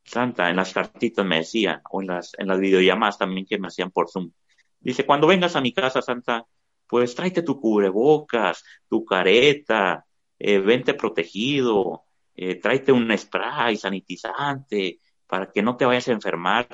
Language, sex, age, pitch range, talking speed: English, male, 30-49, 95-135 Hz, 165 wpm